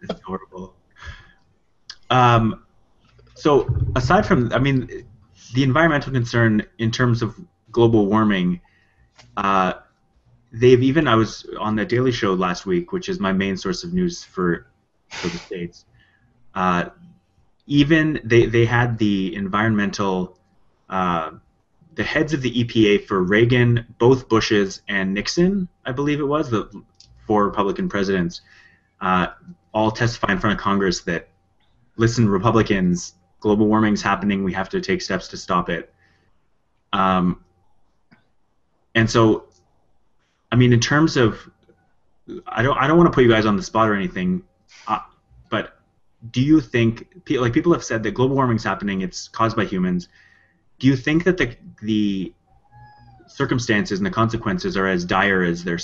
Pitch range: 95-130 Hz